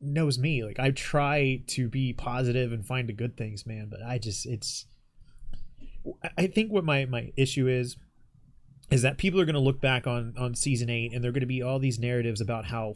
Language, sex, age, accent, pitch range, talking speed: English, male, 30-49, American, 115-135 Hz, 220 wpm